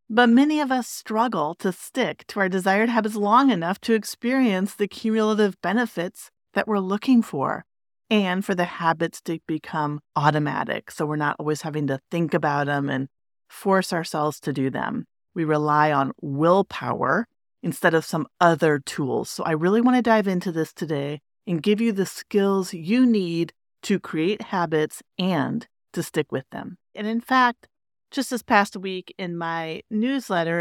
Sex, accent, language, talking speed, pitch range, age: female, American, English, 170 wpm, 170-230 Hz, 30-49